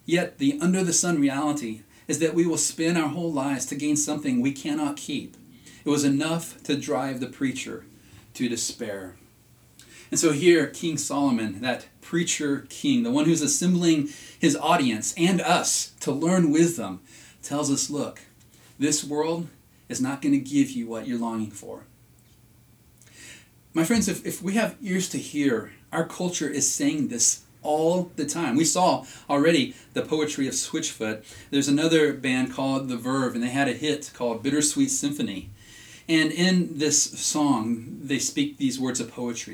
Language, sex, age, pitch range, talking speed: English, male, 30-49, 135-185 Hz, 165 wpm